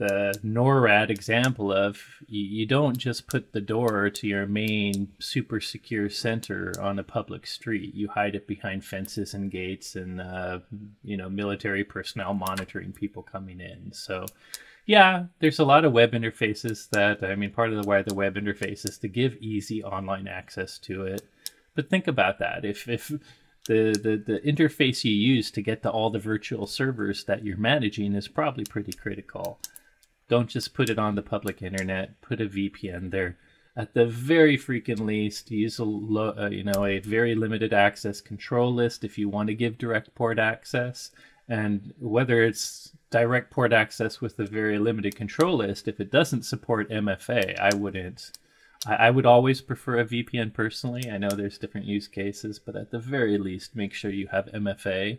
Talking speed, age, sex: 180 wpm, 30-49, male